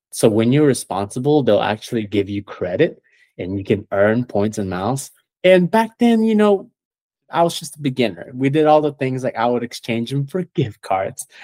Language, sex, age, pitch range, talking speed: English, male, 20-39, 105-135 Hz, 205 wpm